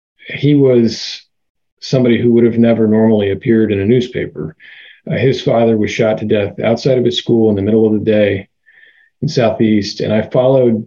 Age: 40-59